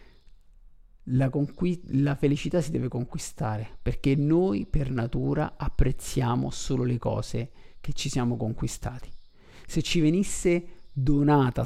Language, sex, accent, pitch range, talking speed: Italian, male, native, 120-145 Hz, 115 wpm